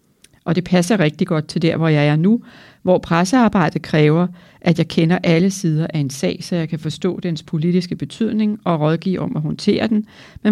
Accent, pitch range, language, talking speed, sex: native, 160-195 Hz, Danish, 205 wpm, female